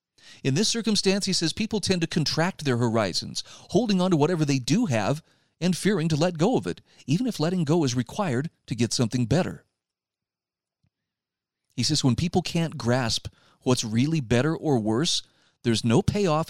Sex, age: male, 40-59